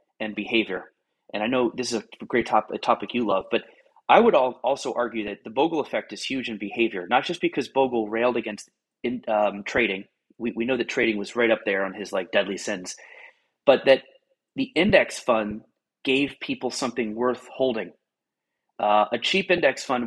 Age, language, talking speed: 30-49, English, 195 wpm